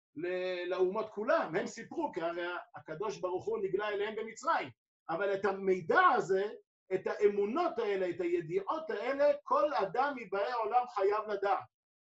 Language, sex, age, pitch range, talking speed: Hebrew, male, 50-69, 185-260 Hz, 140 wpm